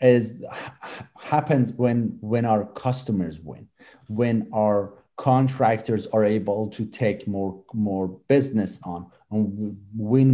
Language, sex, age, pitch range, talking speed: English, male, 40-59, 105-130 Hz, 115 wpm